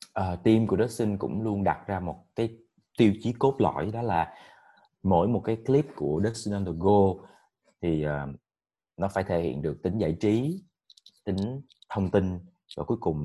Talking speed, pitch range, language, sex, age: 190 wpm, 80-105 Hz, Vietnamese, male, 20-39